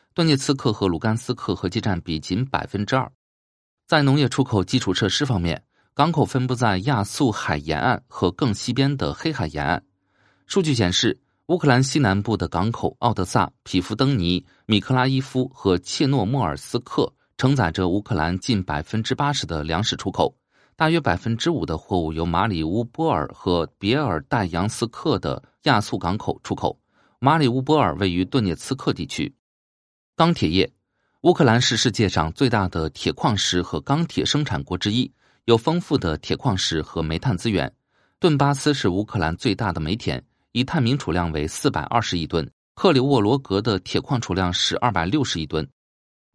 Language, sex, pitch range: Chinese, male, 90-140 Hz